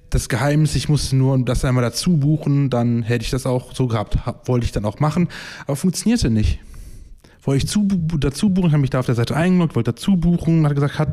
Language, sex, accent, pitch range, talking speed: German, male, German, 125-155 Hz, 230 wpm